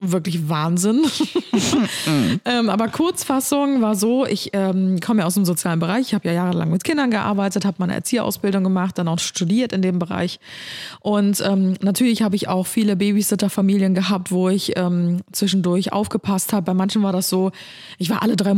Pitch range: 185-215 Hz